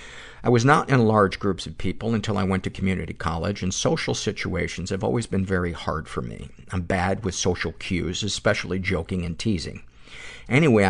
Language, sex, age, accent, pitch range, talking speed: English, male, 50-69, American, 85-105 Hz, 185 wpm